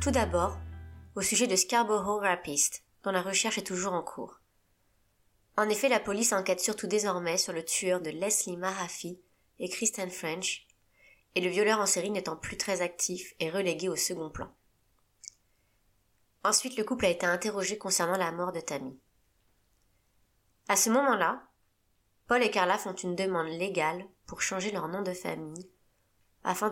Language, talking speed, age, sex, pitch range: French, 160 wpm, 20-39, female, 125-195 Hz